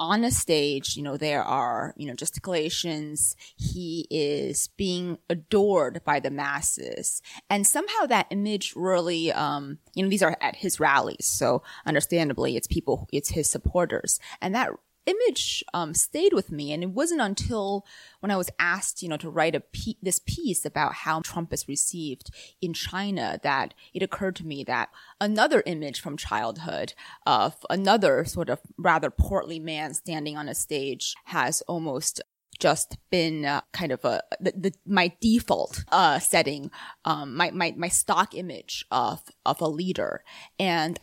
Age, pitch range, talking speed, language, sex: 20-39, 155-200 Hz, 165 wpm, English, female